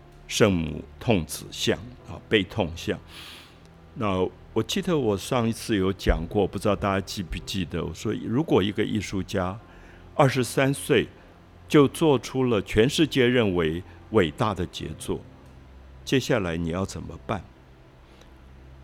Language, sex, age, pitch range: Chinese, male, 50-69, 85-115 Hz